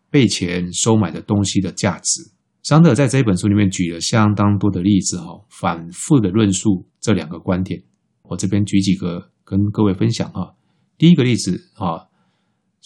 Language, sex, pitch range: Chinese, male, 95-115 Hz